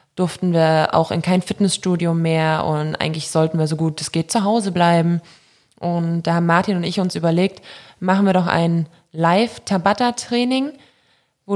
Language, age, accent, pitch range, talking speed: German, 20-39, German, 170-215 Hz, 165 wpm